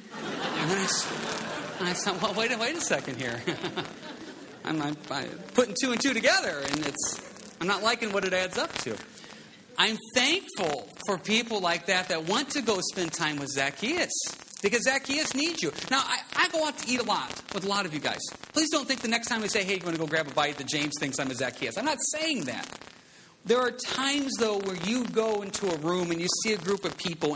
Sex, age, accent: male, 40-59, American